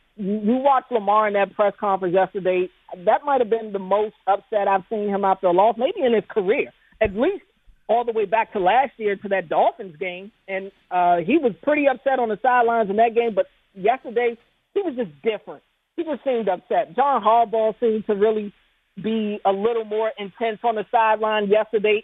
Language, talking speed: English, 200 wpm